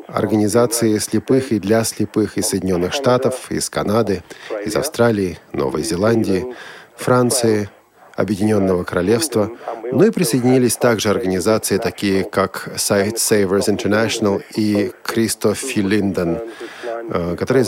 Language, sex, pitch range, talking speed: Russian, male, 100-120 Hz, 105 wpm